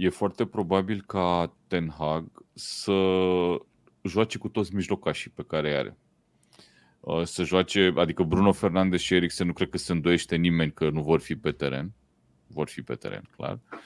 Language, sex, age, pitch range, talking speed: Romanian, male, 30-49, 85-110 Hz, 170 wpm